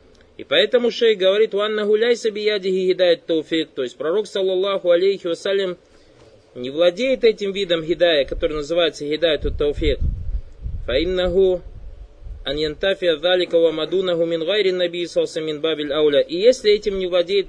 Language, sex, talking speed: Russian, male, 125 wpm